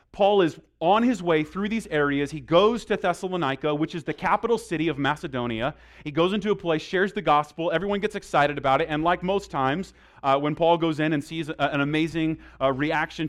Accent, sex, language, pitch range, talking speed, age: American, male, English, 145-185 Hz, 215 wpm, 30-49